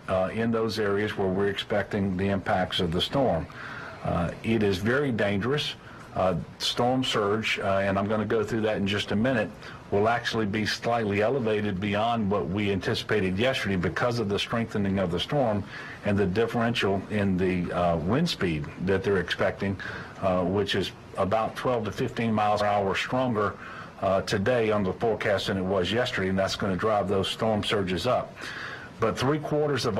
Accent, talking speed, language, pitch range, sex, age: American, 185 wpm, English, 100-120 Hz, male, 50-69